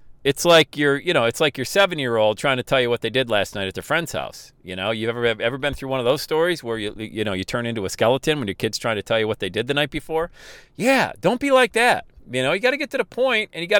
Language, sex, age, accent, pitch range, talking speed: English, male, 40-59, American, 125-210 Hz, 320 wpm